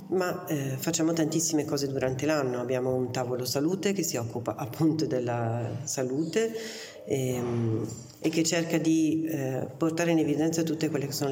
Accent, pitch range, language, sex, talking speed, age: native, 130-160 Hz, Italian, female, 160 wpm, 40-59